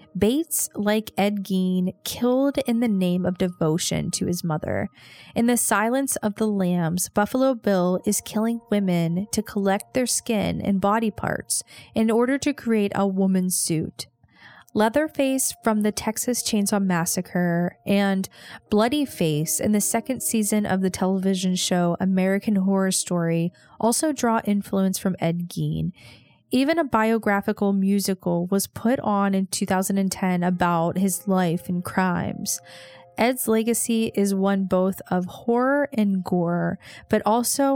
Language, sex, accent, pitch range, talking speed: English, female, American, 180-220 Hz, 140 wpm